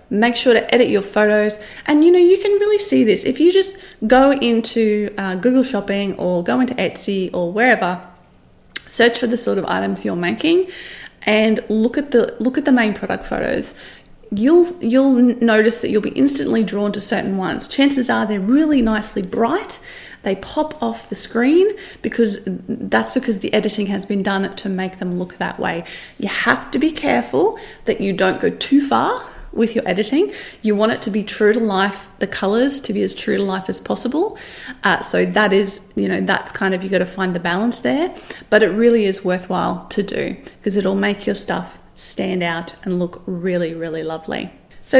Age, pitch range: 30-49, 195-260 Hz